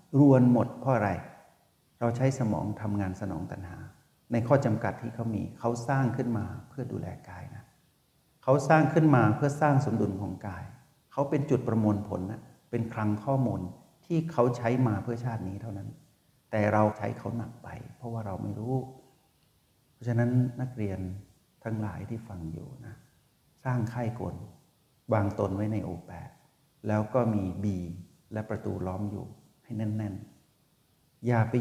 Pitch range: 100-130 Hz